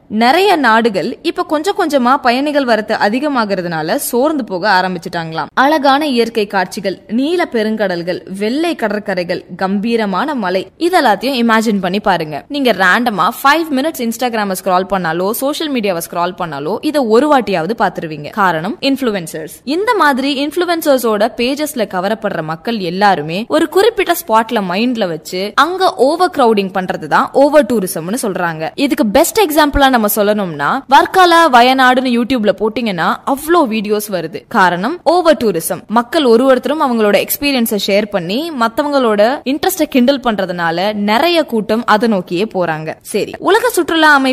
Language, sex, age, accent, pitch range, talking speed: Tamil, female, 20-39, native, 195-275 Hz, 75 wpm